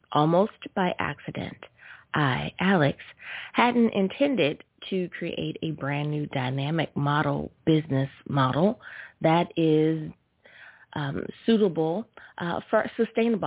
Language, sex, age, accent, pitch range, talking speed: English, female, 30-49, American, 160-200 Hz, 100 wpm